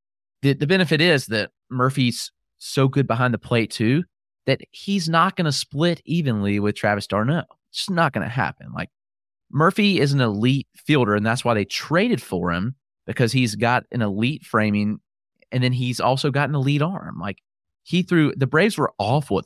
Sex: male